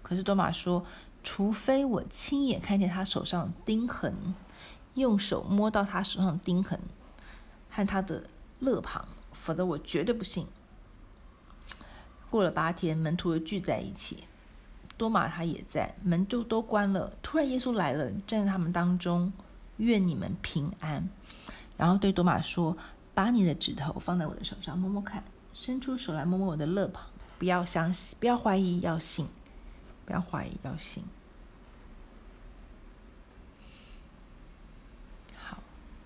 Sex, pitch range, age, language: female, 175-220 Hz, 50-69, Chinese